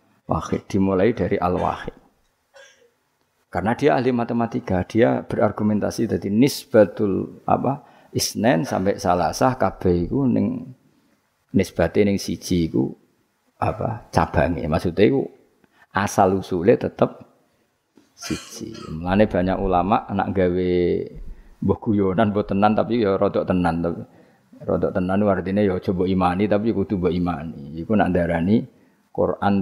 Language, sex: Indonesian, male